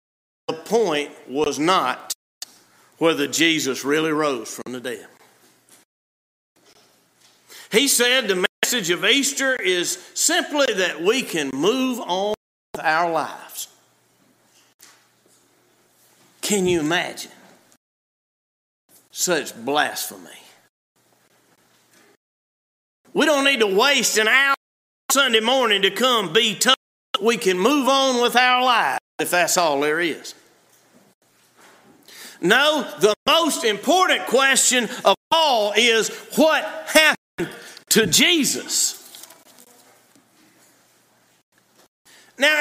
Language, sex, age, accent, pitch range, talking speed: English, male, 50-69, American, 215-295 Hz, 100 wpm